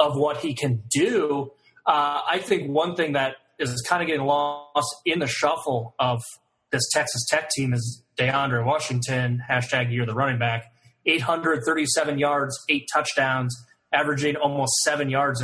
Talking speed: 155 wpm